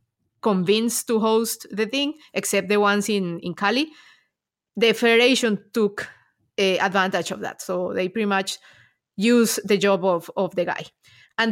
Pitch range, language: 195-245 Hz, English